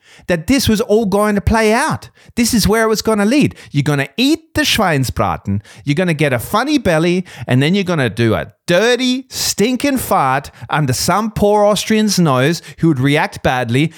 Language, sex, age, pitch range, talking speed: German, male, 30-49, 115-170 Hz, 205 wpm